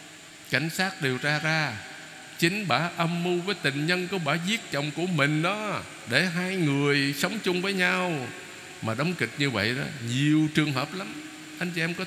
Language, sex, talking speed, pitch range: Vietnamese, male, 200 wpm, 140-180 Hz